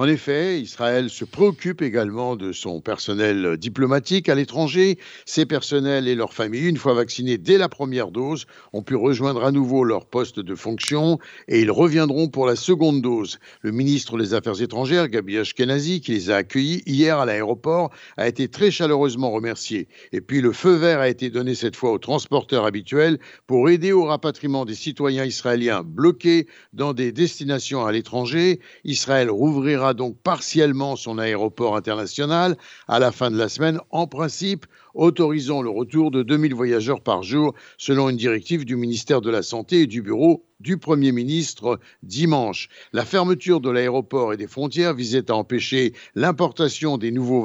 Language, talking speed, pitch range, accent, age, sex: Italian, 170 wpm, 120-160 Hz, French, 60-79, male